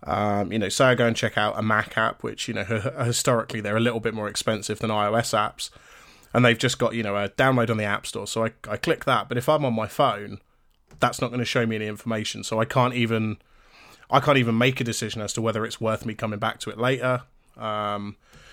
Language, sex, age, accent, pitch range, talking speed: English, male, 20-39, British, 110-125 Hz, 255 wpm